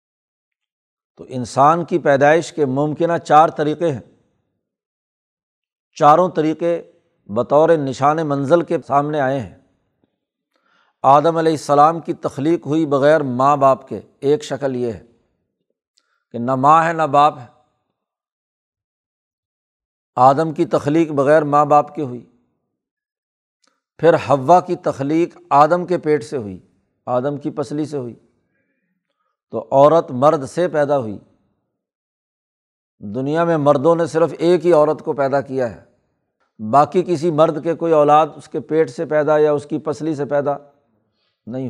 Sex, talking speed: male, 140 wpm